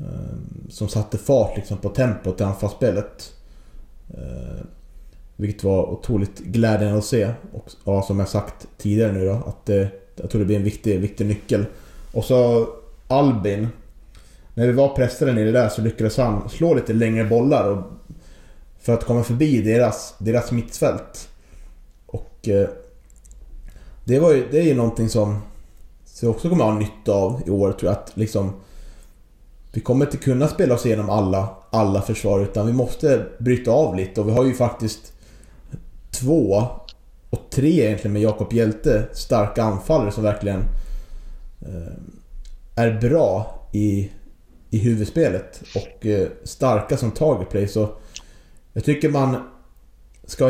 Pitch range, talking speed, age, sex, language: 100-120 Hz, 150 wpm, 30-49, male, Swedish